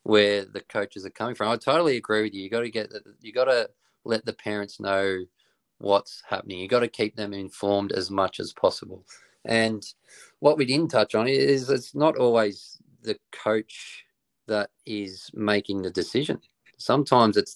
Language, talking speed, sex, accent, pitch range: English, 180 wpm, male, Australian, 100-115 Hz